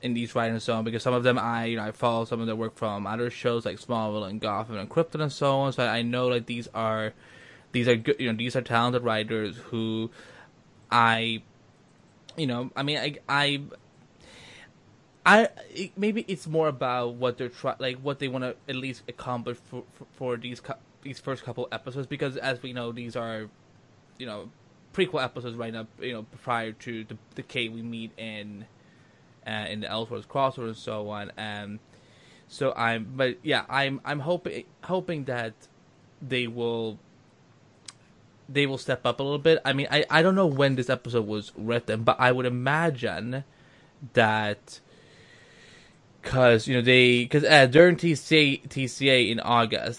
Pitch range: 115-135 Hz